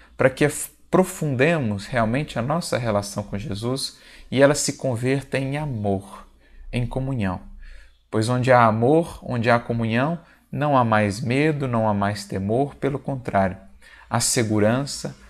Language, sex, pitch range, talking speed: Portuguese, male, 100-130 Hz, 140 wpm